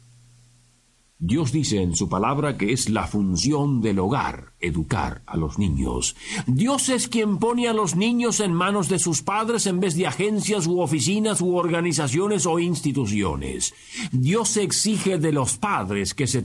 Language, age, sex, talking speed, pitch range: Spanish, 50-69, male, 160 wpm, 120-195 Hz